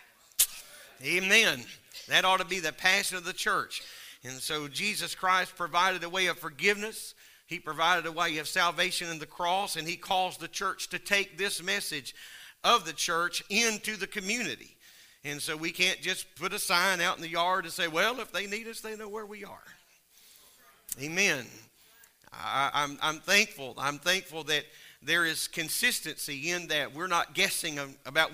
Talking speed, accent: 180 wpm, American